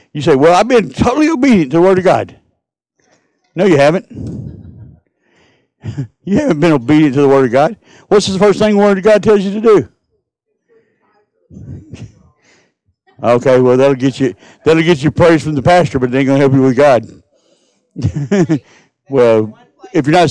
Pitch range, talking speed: 115-170 Hz, 180 wpm